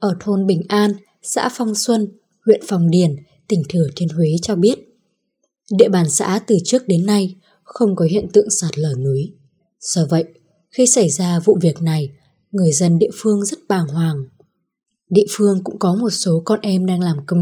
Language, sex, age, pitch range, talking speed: Vietnamese, female, 20-39, 165-210 Hz, 195 wpm